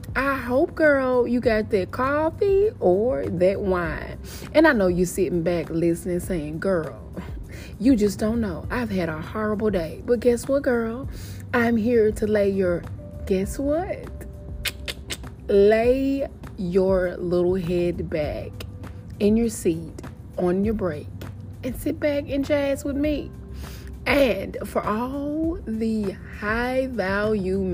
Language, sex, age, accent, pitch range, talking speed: English, female, 20-39, American, 155-225 Hz, 135 wpm